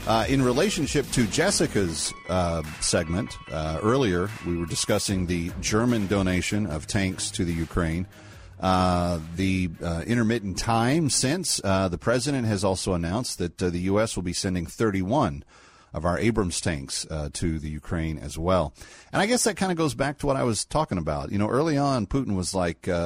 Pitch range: 85-120 Hz